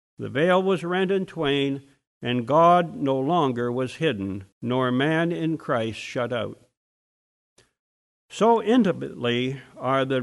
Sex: male